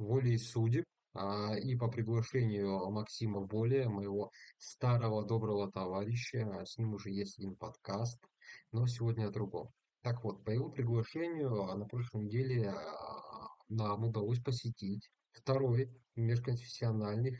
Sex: male